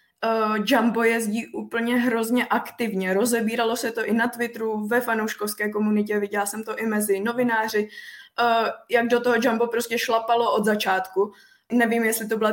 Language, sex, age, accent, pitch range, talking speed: Czech, female, 20-39, native, 210-235 Hz, 165 wpm